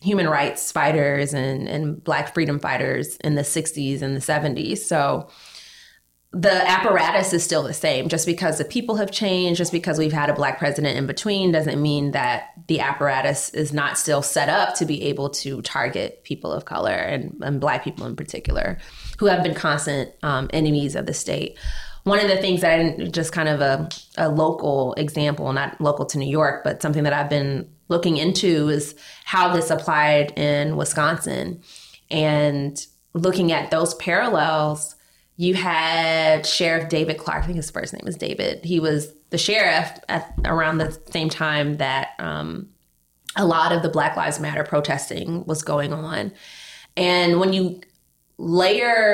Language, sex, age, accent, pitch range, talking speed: English, female, 20-39, American, 145-175 Hz, 175 wpm